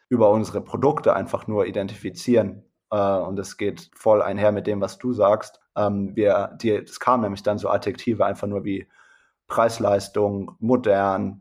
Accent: German